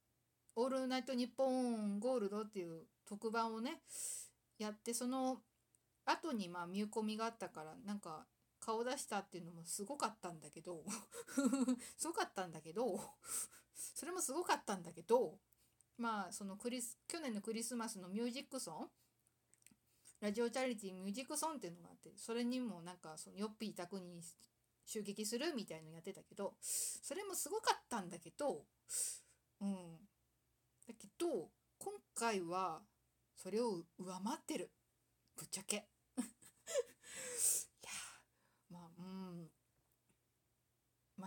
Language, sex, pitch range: Japanese, female, 190-275 Hz